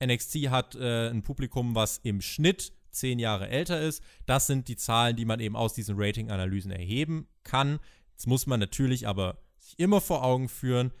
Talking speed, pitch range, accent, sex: 185 wpm, 105-140 Hz, German, male